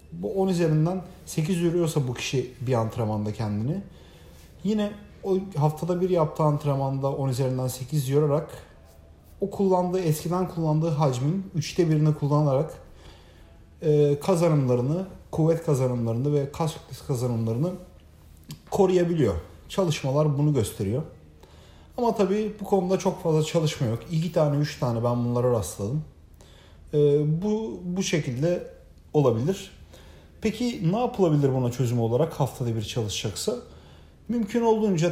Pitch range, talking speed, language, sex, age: 115-165 Hz, 120 wpm, Turkish, male, 40-59